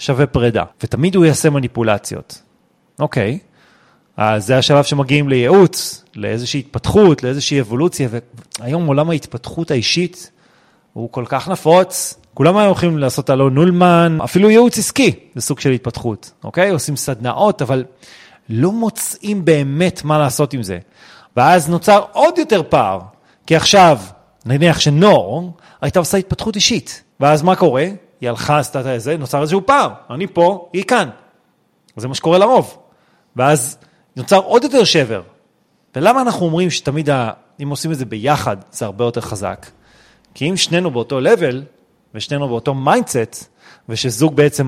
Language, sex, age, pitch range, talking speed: Hebrew, male, 30-49, 125-180 Hz, 145 wpm